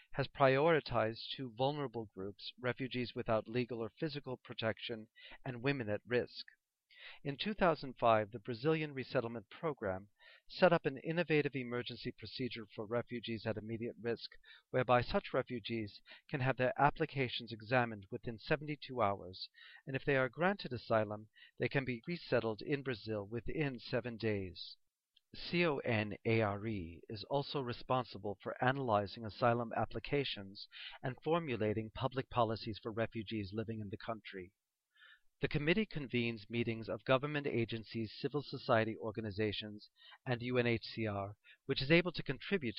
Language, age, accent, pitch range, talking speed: English, 40-59, American, 110-135 Hz, 130 wpm